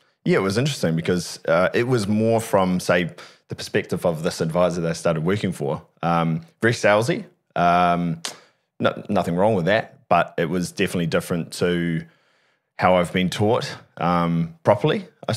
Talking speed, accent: 170 wpm, Australian